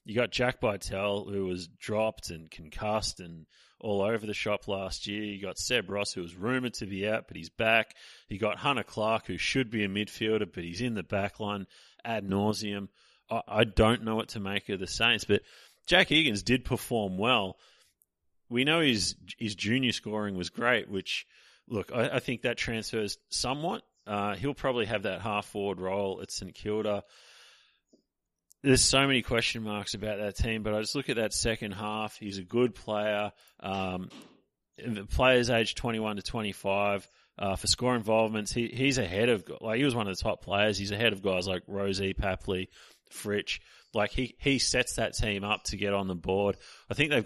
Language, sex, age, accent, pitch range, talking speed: English, male, 30-49, Australian, 100-115 Hz, 195 wpm